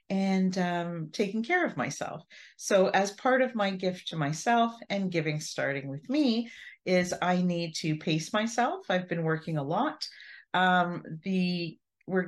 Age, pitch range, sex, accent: 40-59, 150-195 Hz, female, American